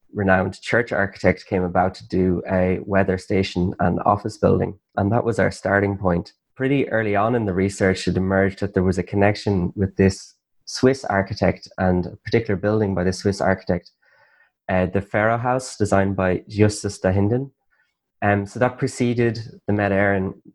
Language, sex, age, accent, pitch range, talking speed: English, male, 20-39, Irish, 95-105 Hz, 175 wpm